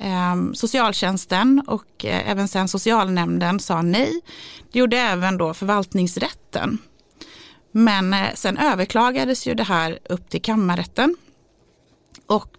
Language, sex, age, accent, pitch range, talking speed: Swedish, female, 30-49, native, 180-245 Hz, 105 wpm